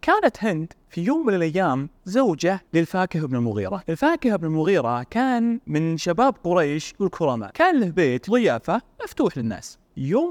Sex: male